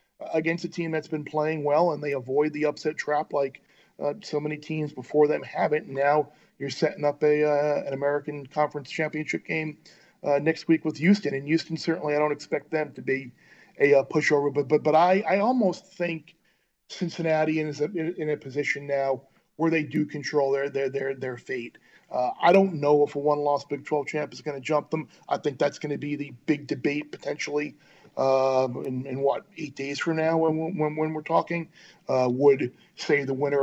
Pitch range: 135-160 Hz